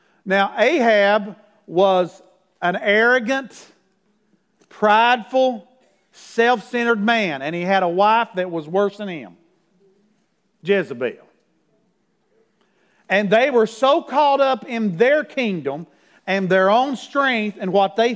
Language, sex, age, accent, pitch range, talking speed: English, male, 50-69, American, 195-235 Hz, 115 wpm